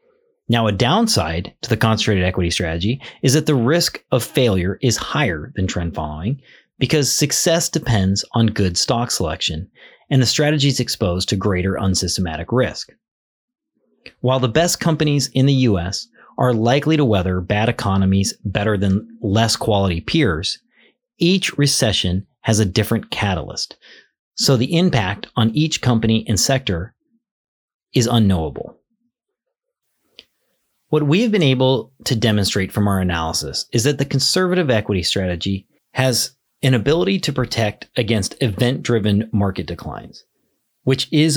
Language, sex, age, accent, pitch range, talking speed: English, male, 30-49, American, 100-140 Hz, 140 wpm